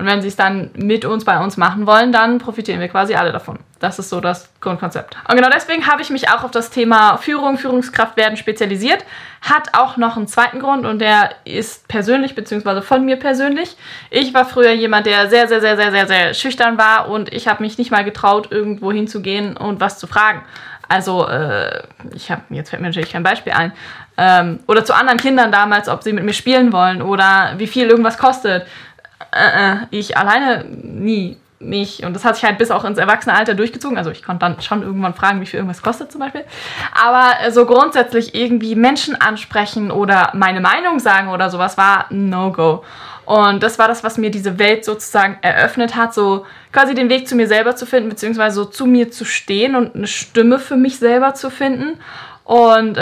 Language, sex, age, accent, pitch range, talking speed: German, female, 10-29, German, 200-245 Hz, 200 wpm